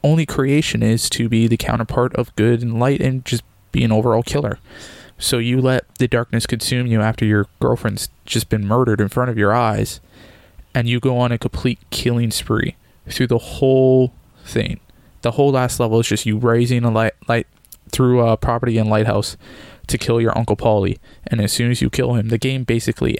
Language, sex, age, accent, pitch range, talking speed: English, male, 20-39, American, 110-125 Hz, 200 wpm